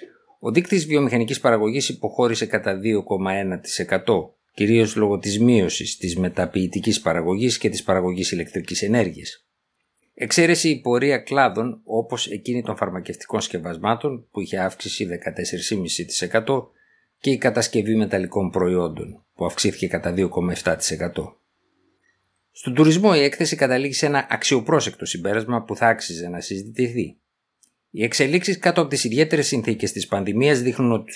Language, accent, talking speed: Greek, native, 125 wpm